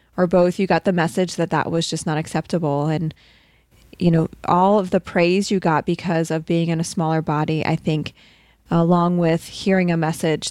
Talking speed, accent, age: 200 wpm, American, 20-39